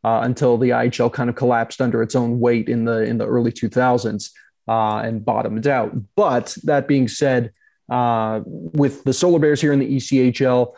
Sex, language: male, English